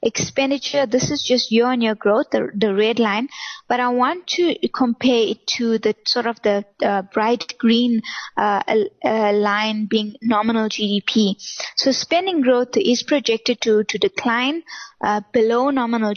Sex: female